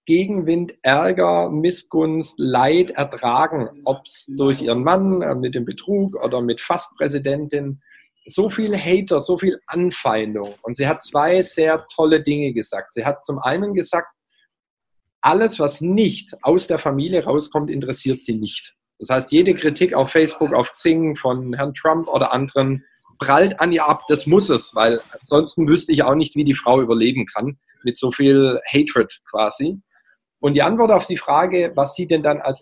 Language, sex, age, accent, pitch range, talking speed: German, male, 40-59, German, 135-175 Hz, 170 wpm